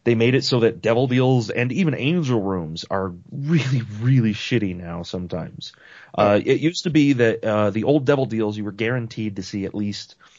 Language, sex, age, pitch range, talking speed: English, male, 30-49, 95-125 Hz, 200 wpm